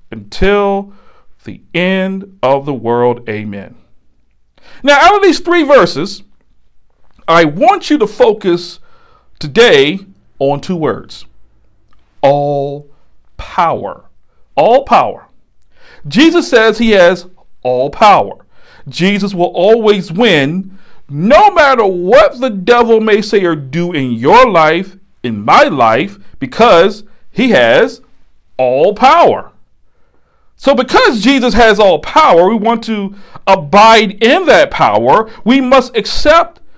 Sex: male